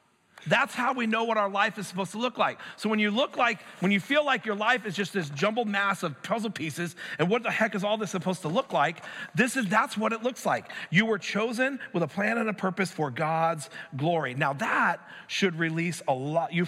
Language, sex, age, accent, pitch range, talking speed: English, male, 40-59, American, 160-210 Hz, 240 wpm